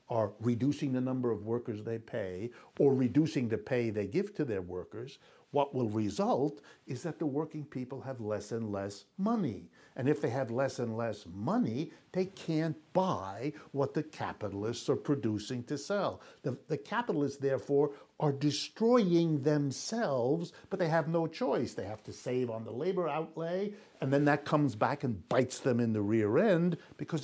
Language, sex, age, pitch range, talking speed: English, male, 60-79, 125-180 Hz, 180 wpm